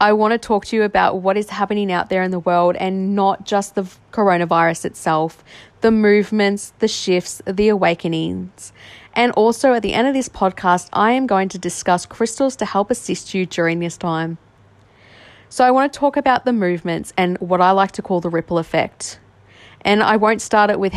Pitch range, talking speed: 160-205 Hz, 205 wpm